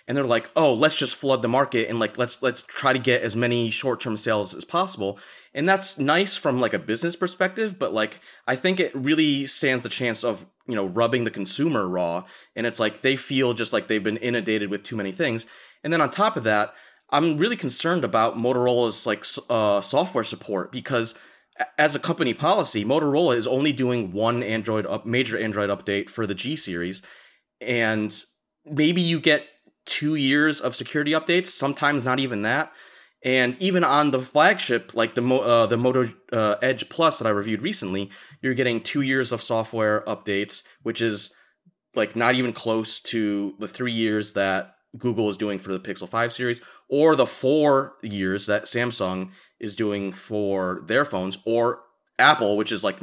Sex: male